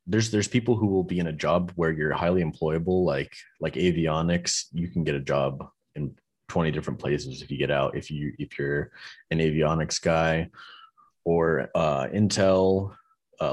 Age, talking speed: 20-39, 175 wpm